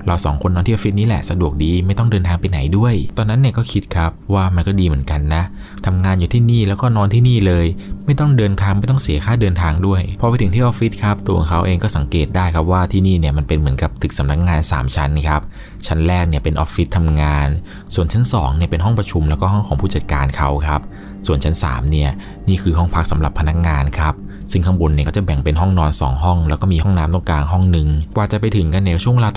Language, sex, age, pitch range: Thai, male, 20-39, 80-100 Hz